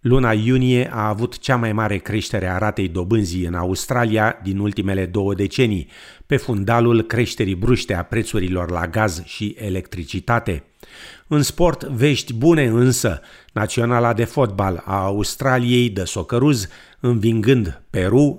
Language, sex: Romanian, male